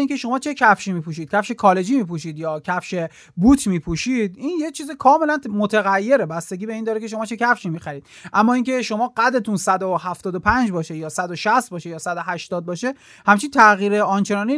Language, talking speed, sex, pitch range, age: Persian, 175 wpm, male, 175-235 Hz, 30-49